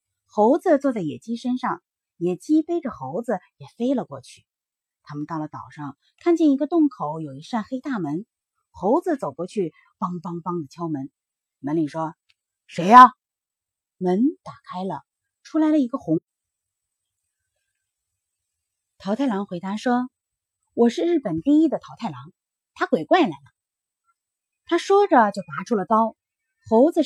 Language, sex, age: Chinese, female, 30-49